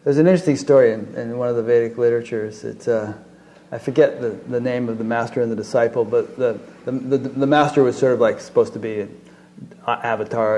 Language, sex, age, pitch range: English, male, 30-49, 120-145 Hz